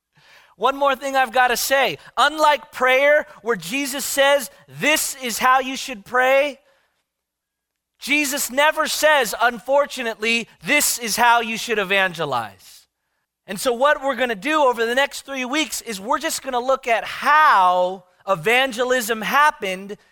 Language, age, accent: English, 30-49, American